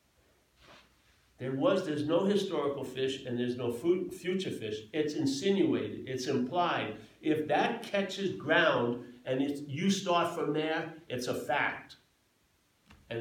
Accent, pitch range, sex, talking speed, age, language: American, 120-150 Hz, male, 130 wpm, 50-69, English